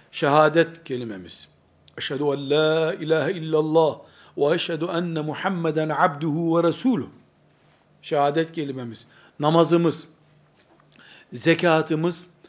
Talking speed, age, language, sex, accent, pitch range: 85 wpm, 60-79, Turkish, male, native, 165-215 Hz